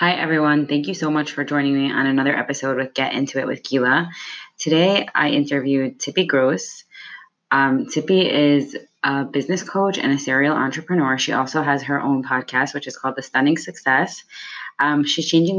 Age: 20-39